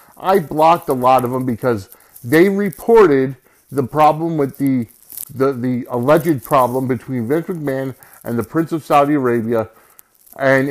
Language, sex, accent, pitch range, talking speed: English, male, American, 130-175 Hz, 150 wpm